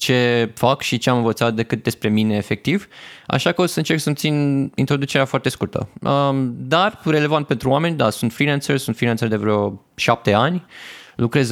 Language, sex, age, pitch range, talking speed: Romanian, male, 20-39, 110-135 Hz, 175 wpm